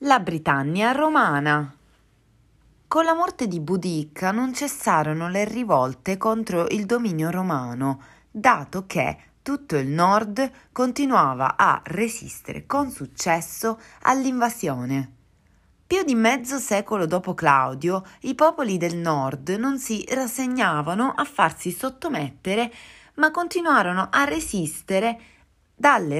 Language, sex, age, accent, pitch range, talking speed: Italian, female, 30-49, native, 155-250 Hz, 110 wpm